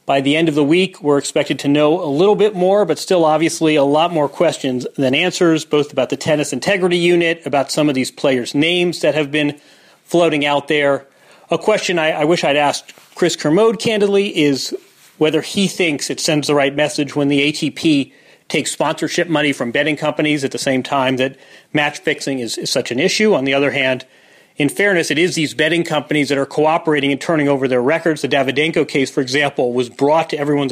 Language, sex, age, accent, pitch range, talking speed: English, male, 40-59, American, 140-170 Hz, 215 wpm